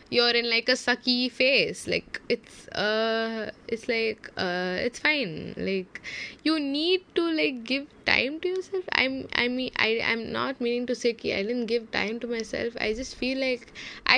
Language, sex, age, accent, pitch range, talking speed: Tamil, female, 10-29, native, 200-255 Hz, 180 wpm